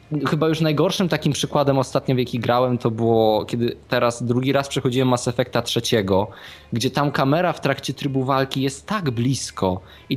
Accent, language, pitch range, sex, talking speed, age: native, Polish, 115-155 Hz, male, 175 wpm, 20-39